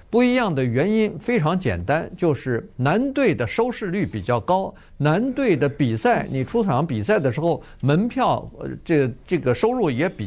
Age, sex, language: 50-69, male, Chinese